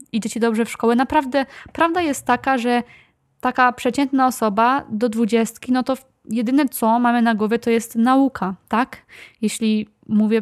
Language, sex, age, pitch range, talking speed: Polish, female, 20-39, 225-255 Hz, 160 wpm